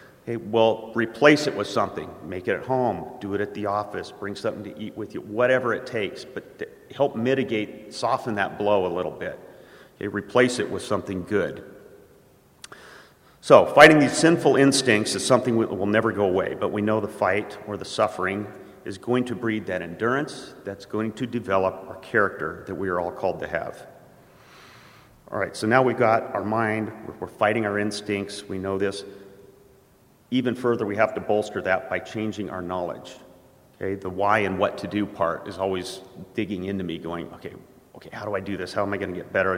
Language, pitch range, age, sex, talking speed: English, 95-115 Hz, 40-59, male, 195 wpm